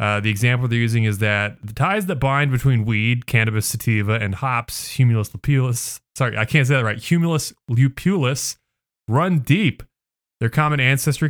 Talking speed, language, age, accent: 170 wpm, English, 30-49, American